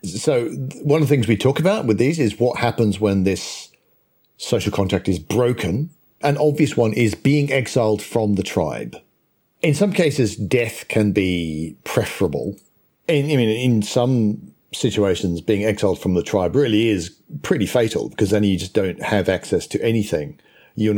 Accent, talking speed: British, 170 wpm